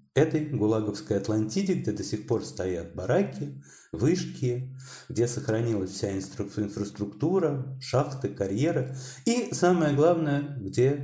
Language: Russian